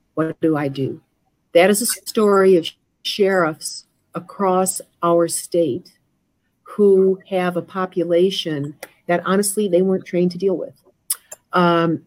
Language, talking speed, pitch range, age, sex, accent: English, 130 wpm, 170-200 Hz, 50-69, female, American